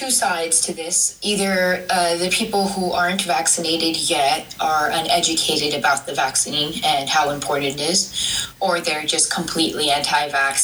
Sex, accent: female, American